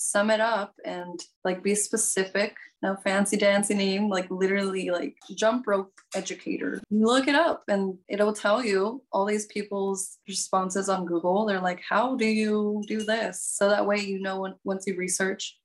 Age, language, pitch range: 20-39, English, 185-215 Hz